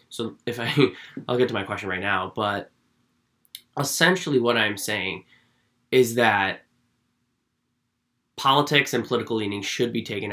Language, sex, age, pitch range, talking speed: English, male, 20-39, 95-115 Hz, 140 wpm